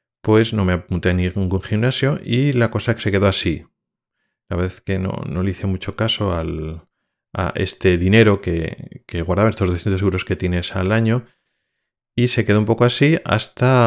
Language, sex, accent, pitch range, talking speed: Spanish, male, Spanish, 90-115 Hz, 190 wpm